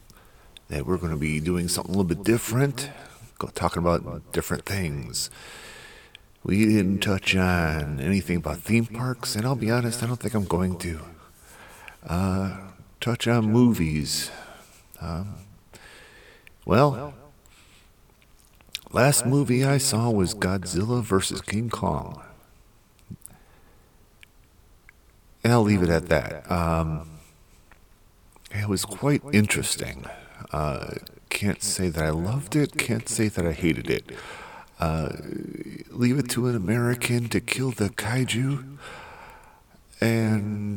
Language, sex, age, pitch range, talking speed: English, male, 50-69, 90-115 Hz, 125 wpm